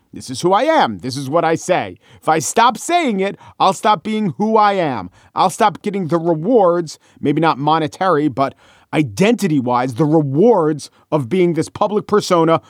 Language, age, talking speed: English, 40-59, 180 wpm